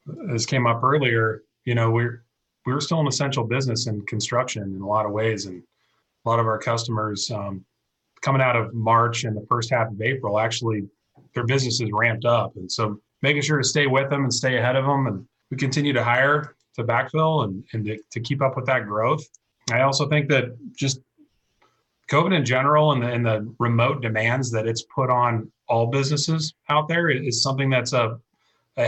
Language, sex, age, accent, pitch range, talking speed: English, male, 30-49, American, 115-135 Hz, 200 wpm